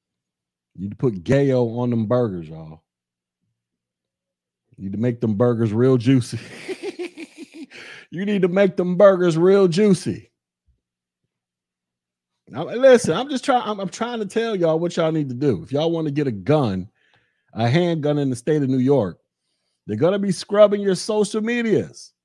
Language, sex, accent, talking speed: English, male, American, 175 wpm